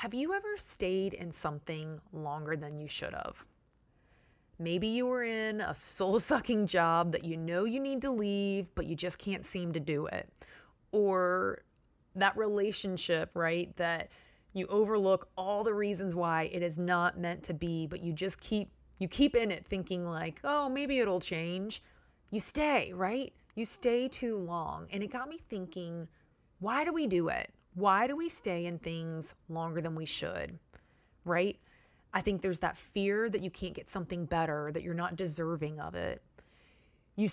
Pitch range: 170-215 Hz